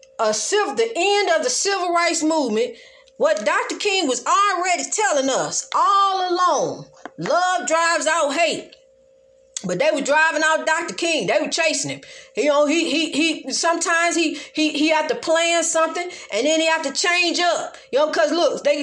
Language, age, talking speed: English, 40-59, 185 wpm